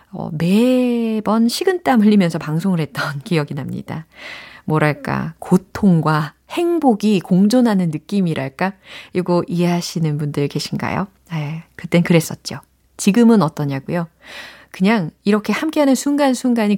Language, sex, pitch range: Korean, female, 160-230 Hz